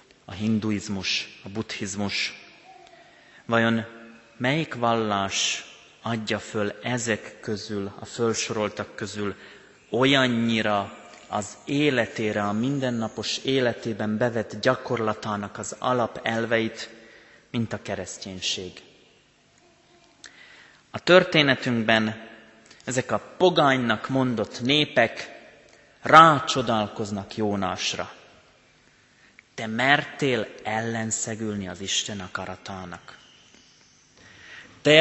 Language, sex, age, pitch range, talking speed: Hungarian, male, 30-49, 105-130 Hz, 75 wpm